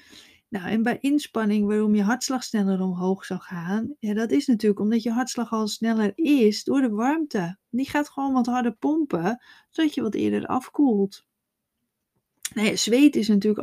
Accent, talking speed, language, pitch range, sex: Dutch, 160 wpm, Dutch, 195-245 Hz, female